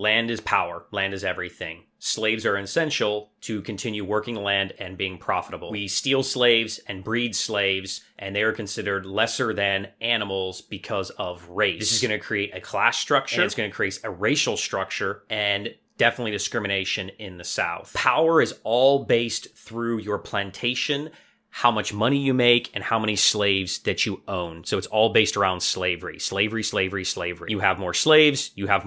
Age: 30-49